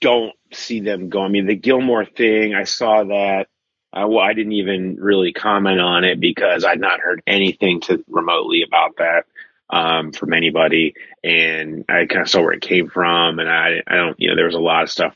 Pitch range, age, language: 90-110 Hz, 30-49, English